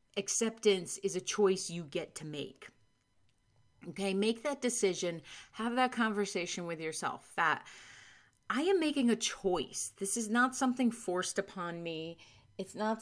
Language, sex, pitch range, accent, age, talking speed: English, female, 165-215 Hz, American, 30-49, 145 wpm